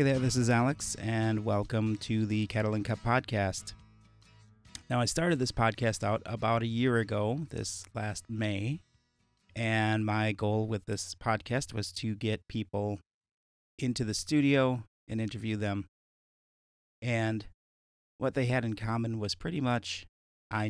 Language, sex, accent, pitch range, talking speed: English, male, American, 100-120 Hz, 150 wpm